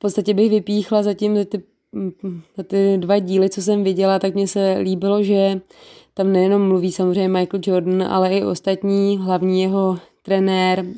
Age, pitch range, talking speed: 20-39, 185-200 Hz, 170 wpm